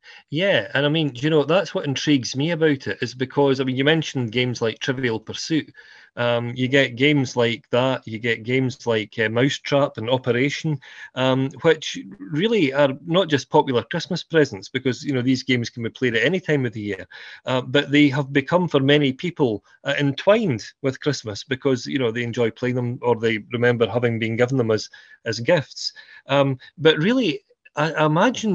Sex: male